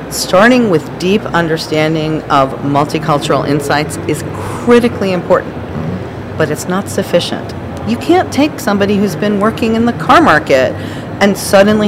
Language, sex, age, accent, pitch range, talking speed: English, female, 40-59, American, 140-185 Hz, 135 wpm